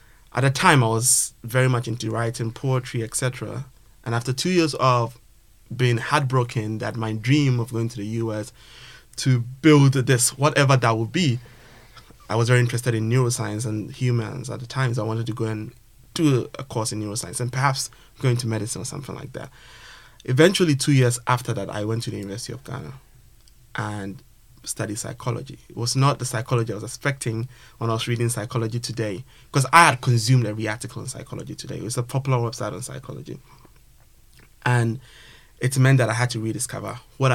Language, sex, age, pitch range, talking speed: English, male, 20-39, 115-130 Hz, 190 wpm